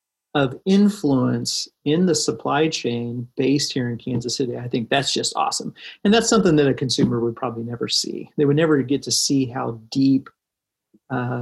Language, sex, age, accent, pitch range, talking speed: English, male, 40-59, American, 125-155 Hz, 185 wpm